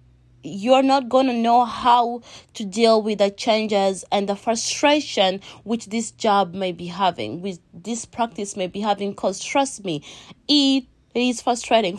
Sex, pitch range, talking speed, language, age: female, 210-275 Hz, 160 wpm, English, 20-39